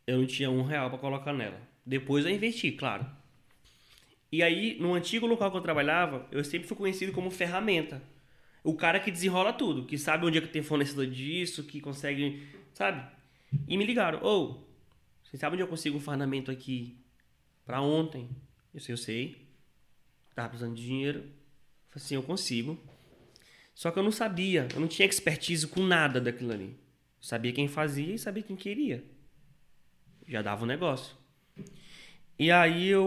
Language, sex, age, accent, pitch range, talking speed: Portuguese, male, 20-39, Brazilian, 130-170 Hz, 175 wpm